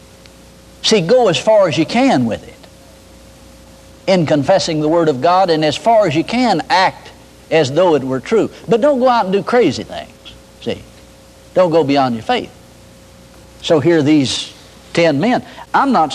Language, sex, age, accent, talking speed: English, male, 60-79, American, 180 wpm